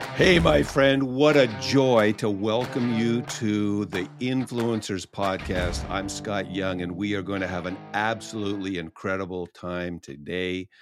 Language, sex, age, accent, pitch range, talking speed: English, male, 50-69, American, 100-125 Hz, 150 wpm